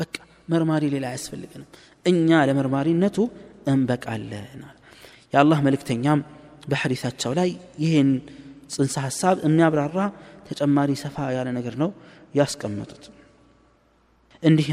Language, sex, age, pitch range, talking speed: Amharic, male, 30-49, 125-155 Hz, 85 wpm